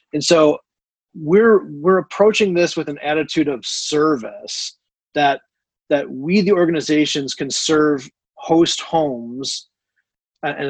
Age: 30-49